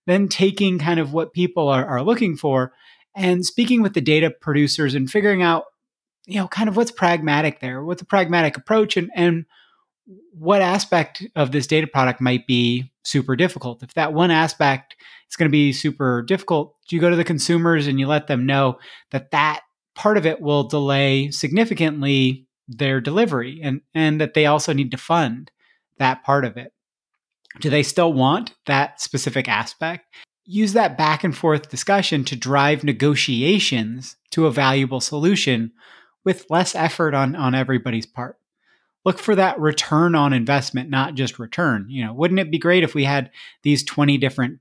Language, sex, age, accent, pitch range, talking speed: English, male, 30-49, American, 135-175 Hz, 180 wpm